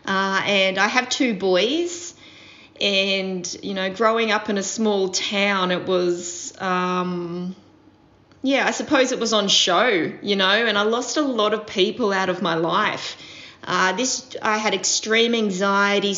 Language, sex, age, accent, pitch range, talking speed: English, female, 20-39, Australian, 185-220 Hz, 165 wpm